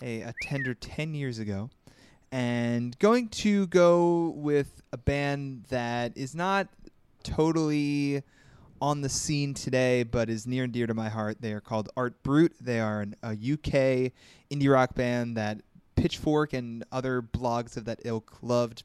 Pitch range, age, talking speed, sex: 110-140 Hz, 20-39, 155 wpm, male